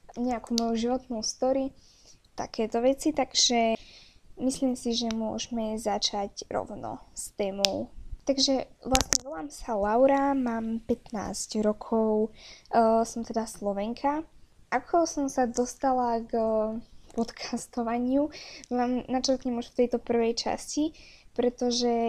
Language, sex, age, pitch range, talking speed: Slovak, female, 10-29, 225-255 Hz, 115 wpm